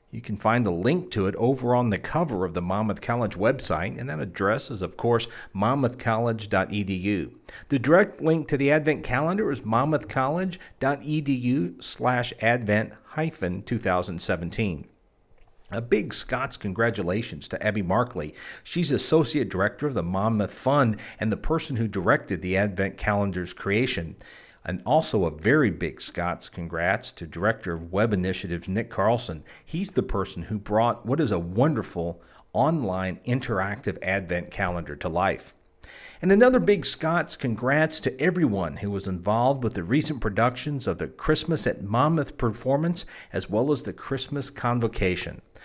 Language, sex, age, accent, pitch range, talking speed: English, male, 50-69, American, 95-140 Hz, 145 wpm